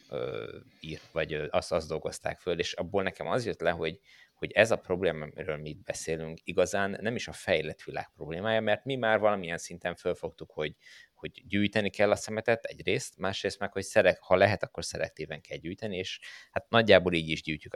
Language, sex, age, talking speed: Hungarian, male, 20-39, 195 wpm